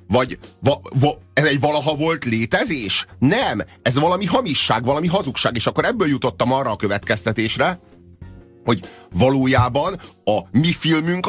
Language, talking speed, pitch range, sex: Hungarian, 140 wpm, 110-155 Hz, male